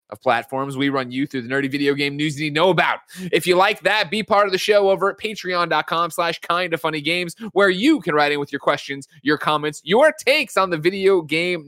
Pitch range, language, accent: 130-180 Hz, English, American